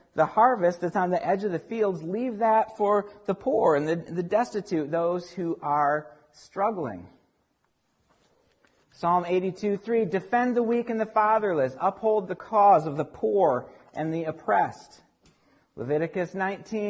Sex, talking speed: male, 140 wpm